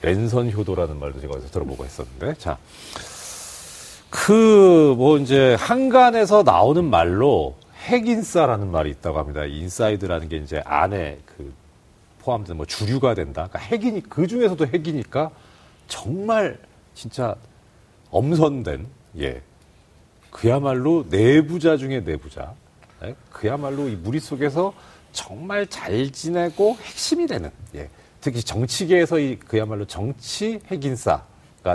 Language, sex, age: Korean, male, 40-59